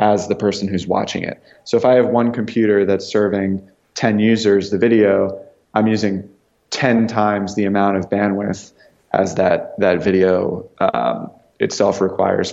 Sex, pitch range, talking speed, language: male, 95-110 Hz, 160 wpm, English